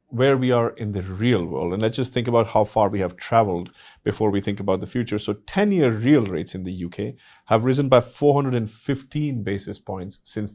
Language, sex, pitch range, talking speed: English, male, 95-125 Hz, 210 wpm